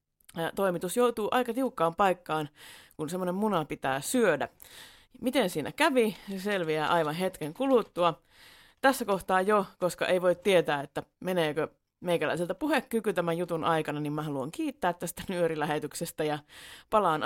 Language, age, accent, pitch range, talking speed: Finnish, 30-49, native, 155-245 Hz, 145 wpm